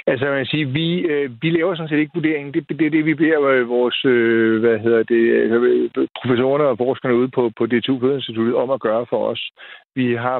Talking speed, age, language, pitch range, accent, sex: 220 wpm, 60-79, Danish, 120-145 Hz, native, male